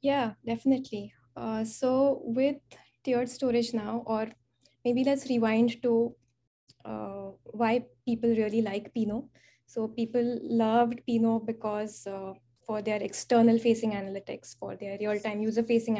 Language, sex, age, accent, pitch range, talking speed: English, female, 20-39, Indian, 195-235 Hz, 130 wpm